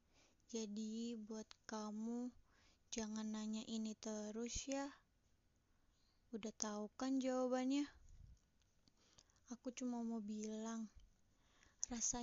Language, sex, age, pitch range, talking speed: Indonesian, female, 20-39, 225-260 Hz, 85 wpm